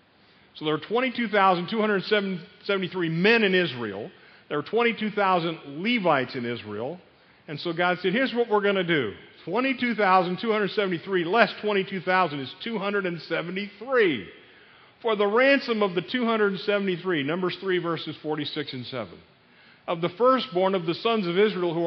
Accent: American